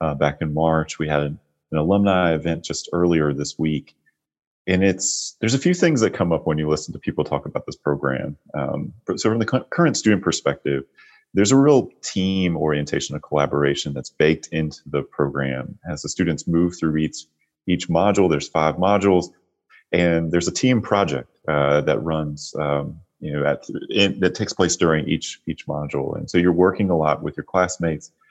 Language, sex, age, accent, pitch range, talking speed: English, male, 30-49, American, 75-95 Hz, 190 wpm